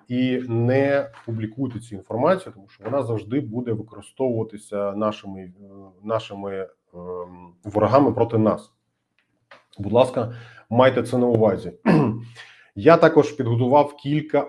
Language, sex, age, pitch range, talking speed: Ukrainian, male, 30-49, 105-125 Hz, 110 wpm